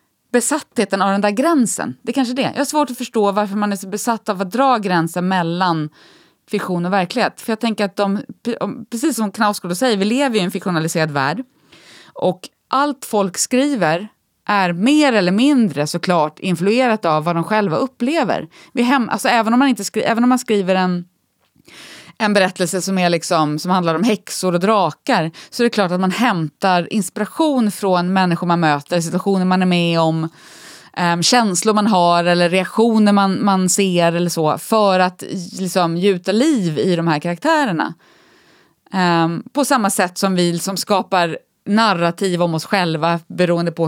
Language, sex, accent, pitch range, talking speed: English, female, Swedish, 175-225 Hz, 180 wpm